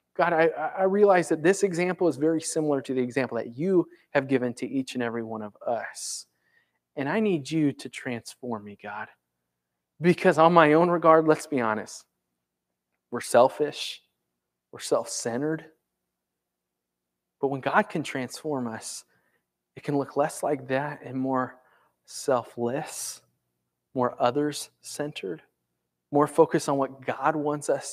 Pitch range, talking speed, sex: 125-170 Hz, 145 wpm, male